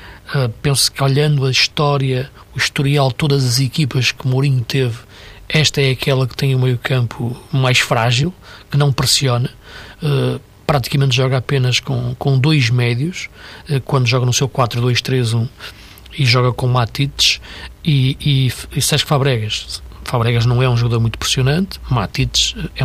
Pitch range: 125-150 Hz